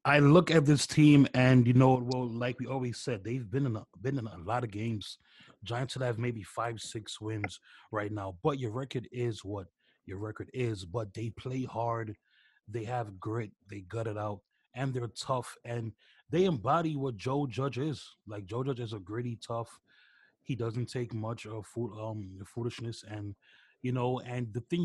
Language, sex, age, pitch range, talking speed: English, male, 20-39, 105-125 Hz, 195 wpm